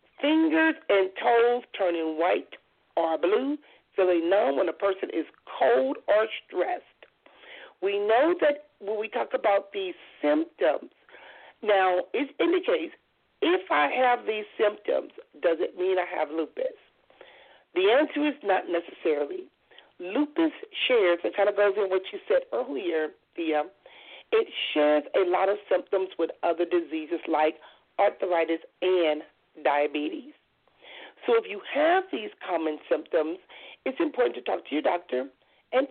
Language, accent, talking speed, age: English, American, 140 wpm, 40-59